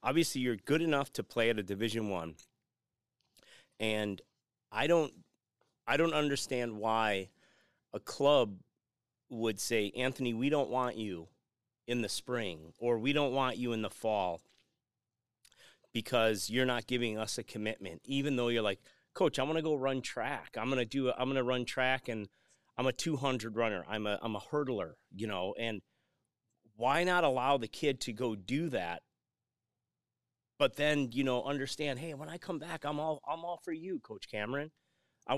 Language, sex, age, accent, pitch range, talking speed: English, male, 30-49, American, 115-145 Hz, 180 wpm